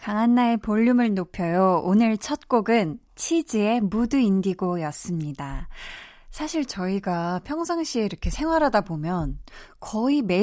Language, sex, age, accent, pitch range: Korean, female, 20-39, native, 175-245 Hz